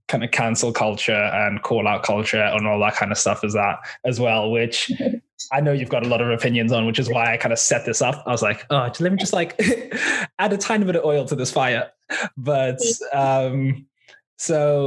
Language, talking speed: English, 230 wpm